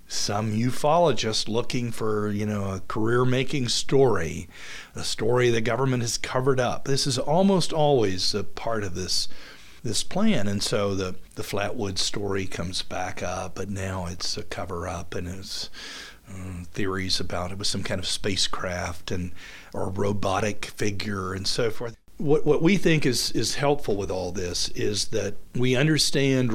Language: English